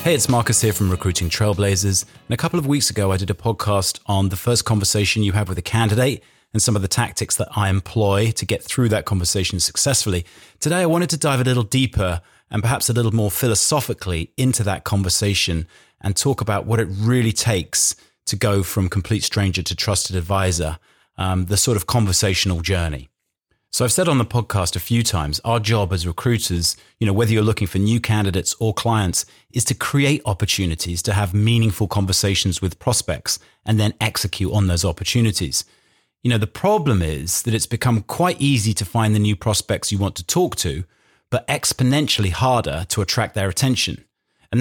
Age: 30-49